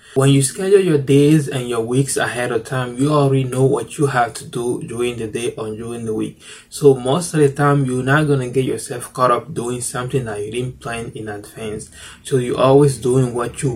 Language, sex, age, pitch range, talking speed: English, male, 20-39, 115-140 Hz, 225 wpm